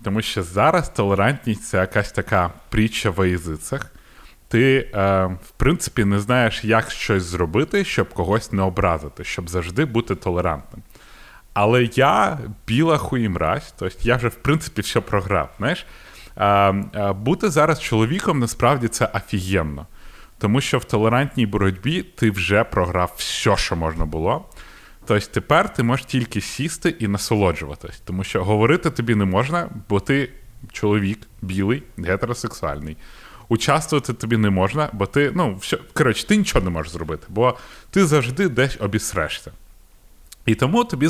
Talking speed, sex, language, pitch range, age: 145 wpm, male, Ukrainian, 95-130 Hz, 30-49